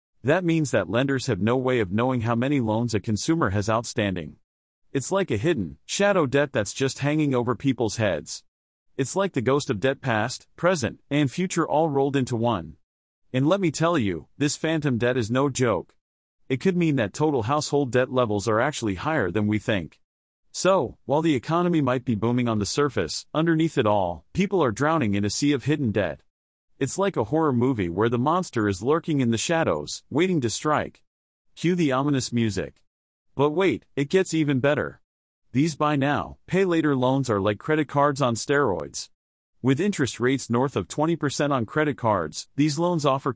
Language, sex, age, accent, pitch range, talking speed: English, male, 30-49, American, 115-150 Hz, 190 wpm